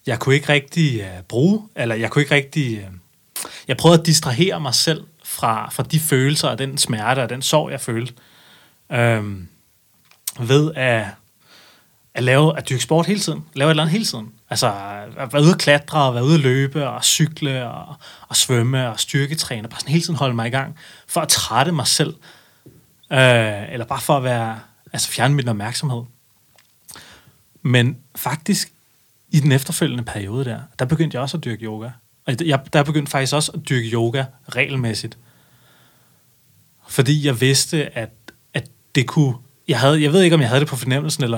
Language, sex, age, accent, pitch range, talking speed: Danish, male, 30-49, native, 120-150 Hz, 185 wpm